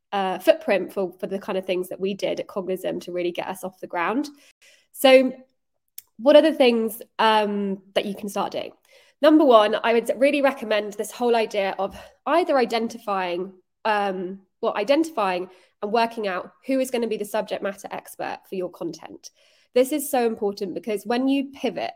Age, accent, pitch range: 20-39, British, 195-260 Hz